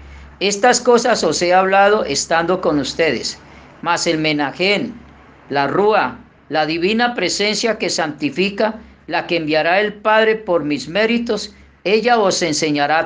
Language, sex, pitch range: Spanish, female, 155-205 Hz